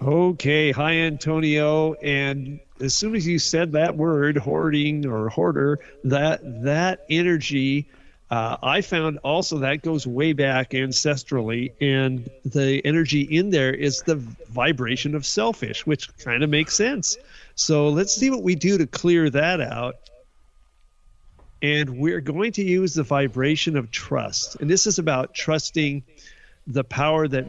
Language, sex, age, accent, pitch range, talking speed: English, male, 50-69, American, 130-155 Hz, 150 wpm